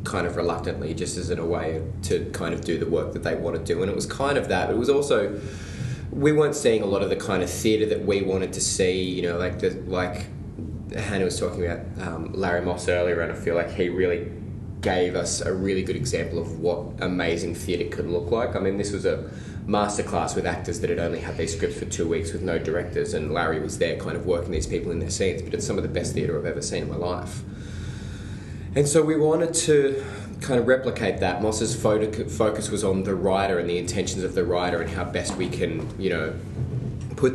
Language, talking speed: English, 240 wpm